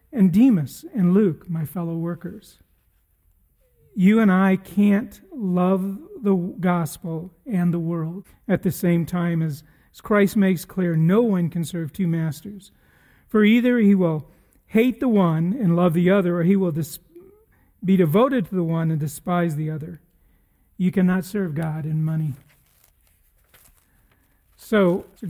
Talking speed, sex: 150 wpm, male